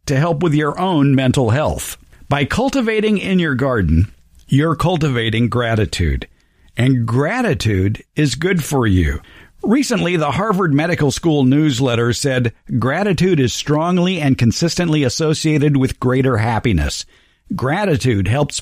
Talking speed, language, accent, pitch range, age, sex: 125 wpm, English, American, 120-165 Hz, 50-69, male